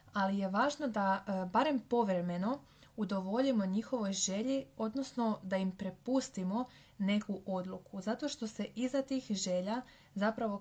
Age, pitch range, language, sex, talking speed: 20-39, 190-230 Hz, Croatian, female, 125 wpm